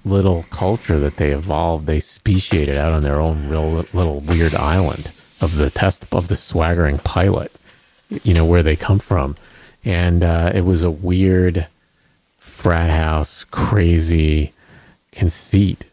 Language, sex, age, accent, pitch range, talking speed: English, male, 40-59, American, 75-95 Hz, 145 wpm